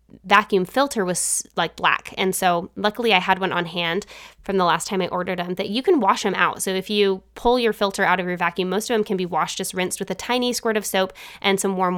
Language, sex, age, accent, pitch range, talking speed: English, female, 20-39, American, 185-230 Hz, 265 wpm